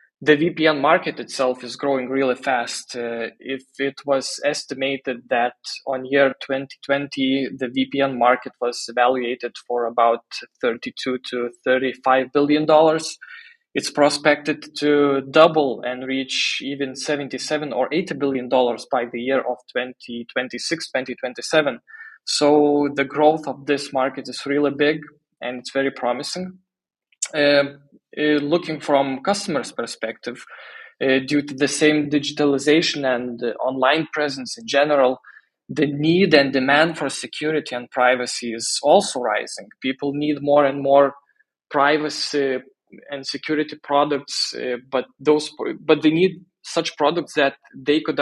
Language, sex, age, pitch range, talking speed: Polish, male, 20-39, 130-150 Hz, 135 wpm